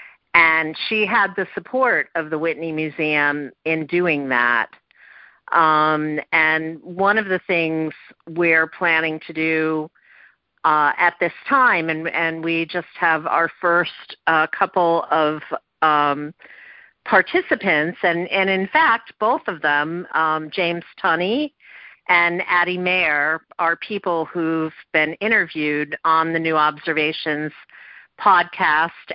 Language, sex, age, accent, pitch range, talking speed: English, female, 50-69, American, 155-175 Hz, 125 wpm